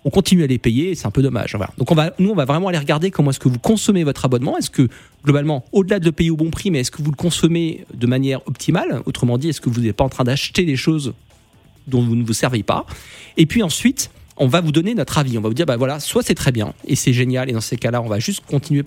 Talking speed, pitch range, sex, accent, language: 300 wpm, 125-160 Hz, male, French, French